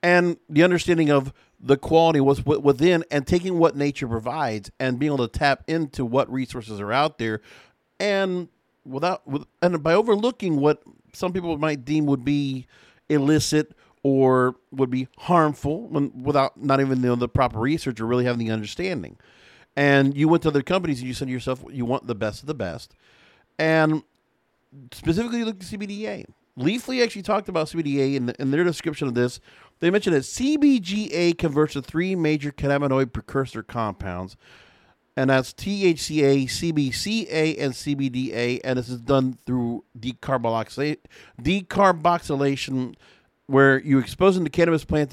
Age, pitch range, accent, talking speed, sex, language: 50-69, 130-170 Hz, American, 155 wpm, male, English